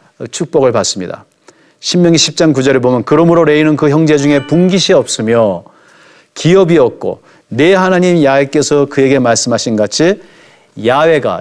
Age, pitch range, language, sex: 40-59, 120-160 Hz, Korean, male